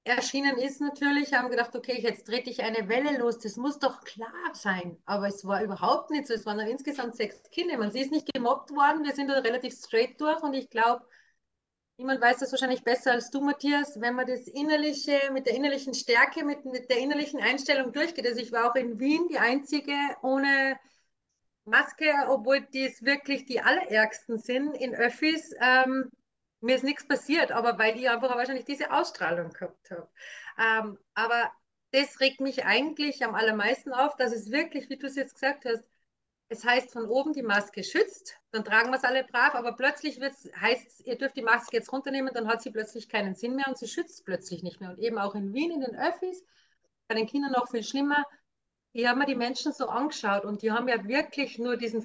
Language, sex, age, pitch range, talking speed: German, female, 30-49, 235-280 Hz, 205 wpm